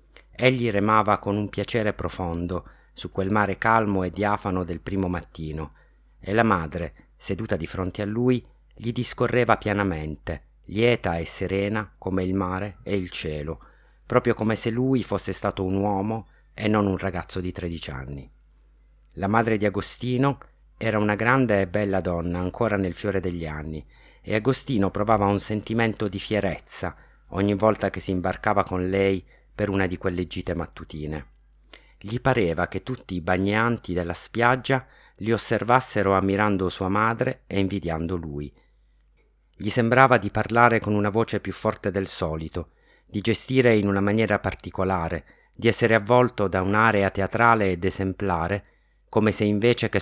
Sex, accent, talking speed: male, native, 155 wpm